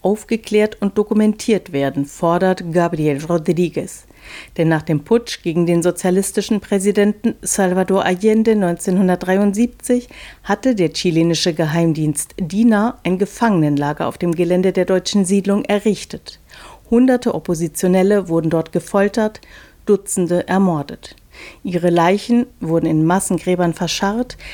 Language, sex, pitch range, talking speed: German, female, 170-210 Hz, 110 wpm